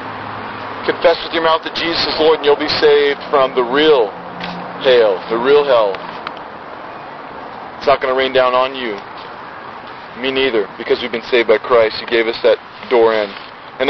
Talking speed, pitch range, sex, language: 180 wpm, 140-195 Hz, male, English